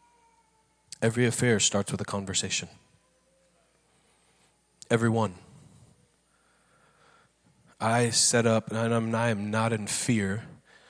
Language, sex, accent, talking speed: English, male, American, 90 wpm